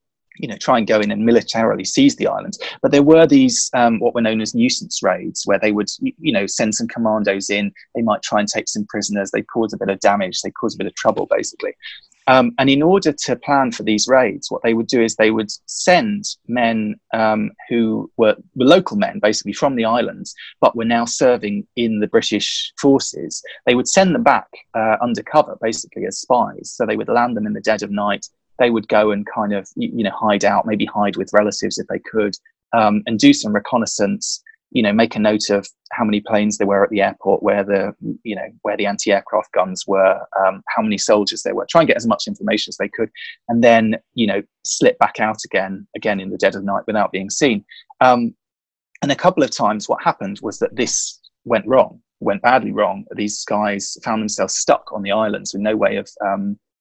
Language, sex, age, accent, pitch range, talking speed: English, male, 20-39, British, 105-140 Hz, 225 wpm